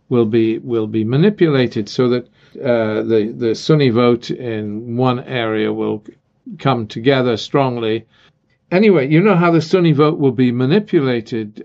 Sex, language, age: male, English, 50-69